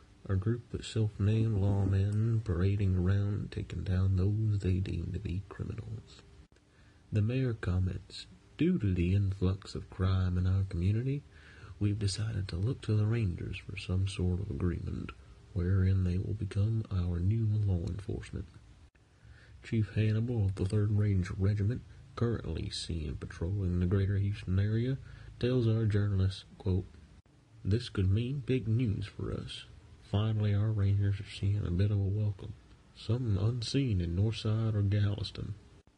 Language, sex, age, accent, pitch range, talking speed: English, male, 30-49, American, 95-110 Hz, 145 wpm